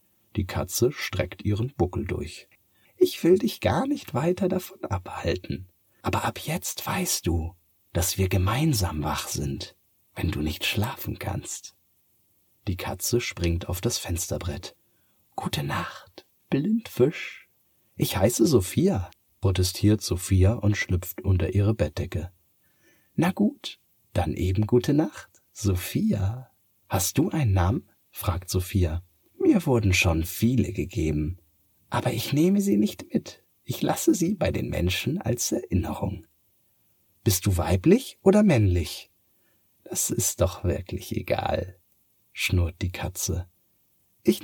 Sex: male